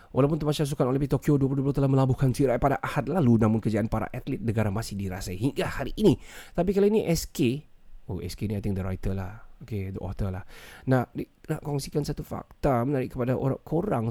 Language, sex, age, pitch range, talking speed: Malay, male, 30-49, 105-135 Hz, 200 wpm